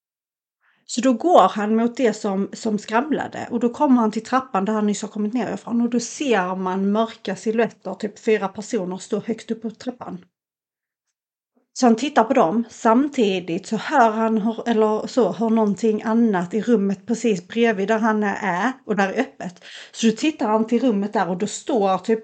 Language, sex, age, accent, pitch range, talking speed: Swedish, female, 40-59, native, 205-245 Hz, 195 wpm